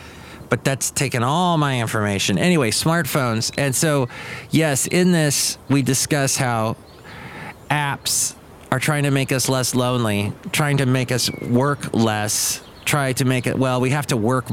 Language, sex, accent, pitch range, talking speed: English, male, American, 120-170 Hz, 160 wpm